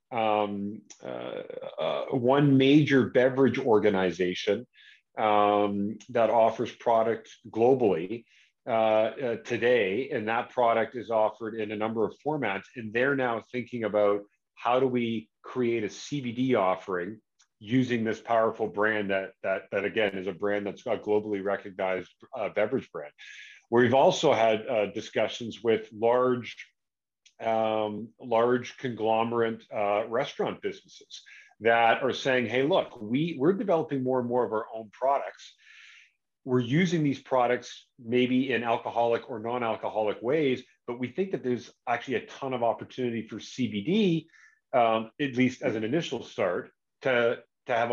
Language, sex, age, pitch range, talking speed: English, male, 40-59, 110-135 Hz, 145 wpm